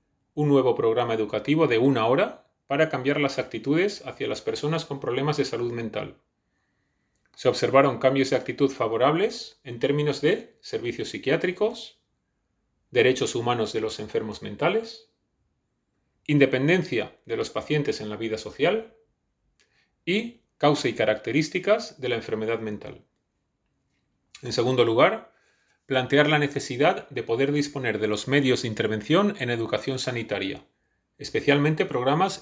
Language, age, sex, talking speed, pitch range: Spanish, 30-49, male, 130 wpm, 115-155 Hz